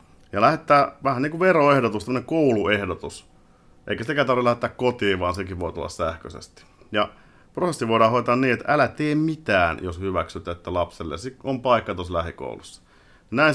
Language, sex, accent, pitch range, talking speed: Finnish, male, native, 90-130 Hz, 155 wpm